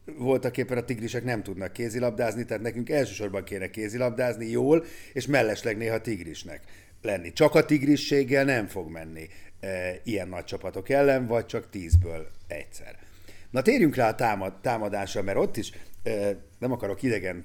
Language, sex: Hungarian, male